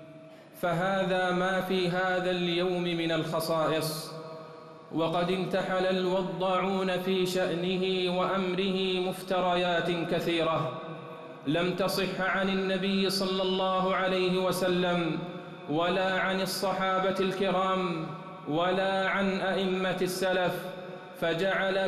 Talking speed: 90 wpm